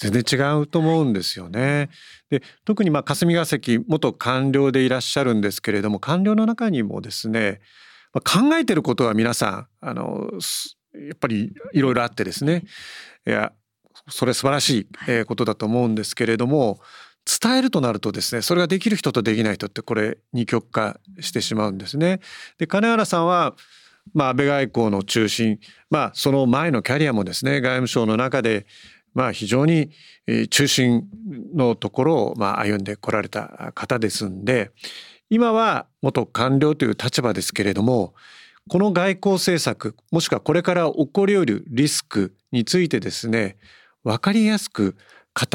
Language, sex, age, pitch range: Japanese, male, 40-59, 110-170 Hz